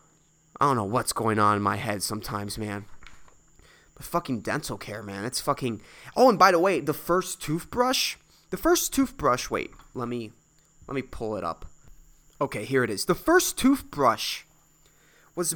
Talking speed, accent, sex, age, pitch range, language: 175 wpm, American, male, 20-39, 130-185 Hz, English